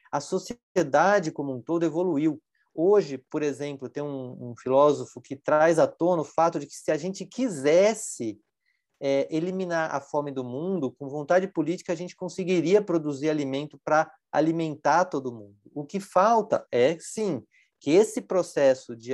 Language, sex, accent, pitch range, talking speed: Portuguese, male, Brazilian, 145-195 Hz, 160 wpm